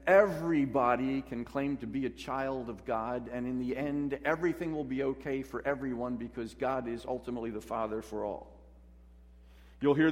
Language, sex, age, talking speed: English, male, 50-69, 170 wpm